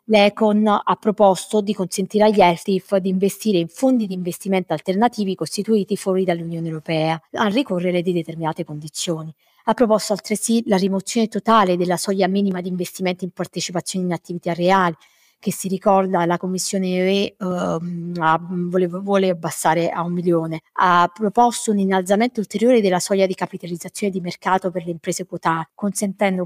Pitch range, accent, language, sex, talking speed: 170-205 Hz, native, Italian, female, 150 wpm